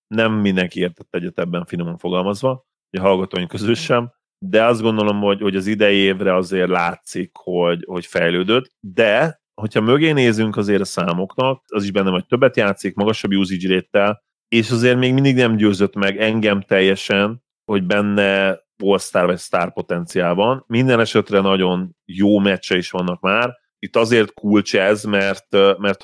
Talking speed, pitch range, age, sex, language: 160 wpm, 90-110 Hz, 30-49, male, Hungarian